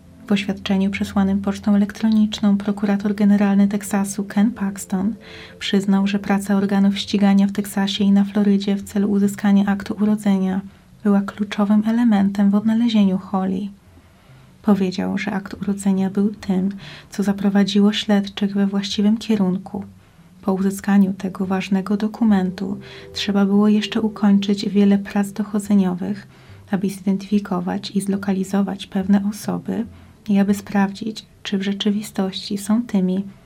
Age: 30-49